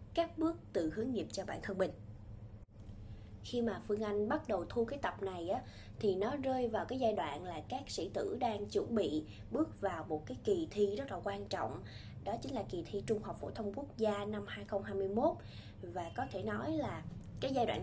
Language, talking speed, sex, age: Vietnamese, 220 wpm, female, 20-39